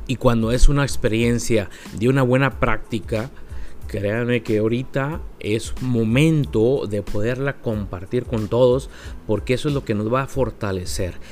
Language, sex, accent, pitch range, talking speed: Spanish, male, Mexican, 100-130 Hz, 150 wpm